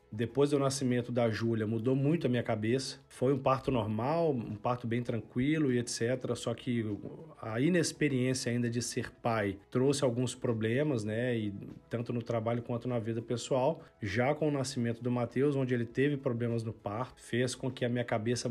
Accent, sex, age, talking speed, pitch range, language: Brazilian, male, 40-59, 190 wpm, 110-130 Hz, Portuguese